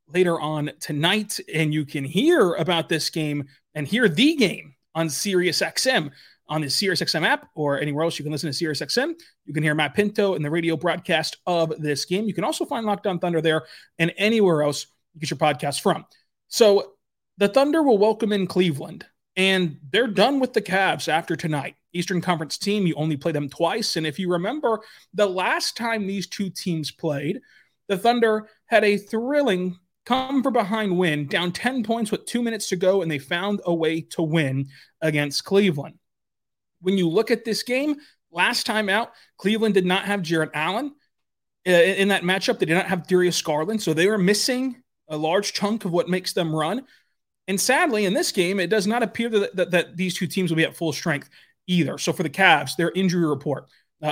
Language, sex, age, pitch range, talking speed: English, male, 30-49, 160-205 Hz, 205 wpm